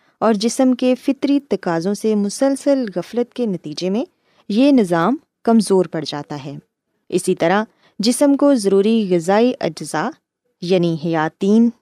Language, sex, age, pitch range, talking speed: Urdu, female, 20-39, 175-245 Hz, 130 wpm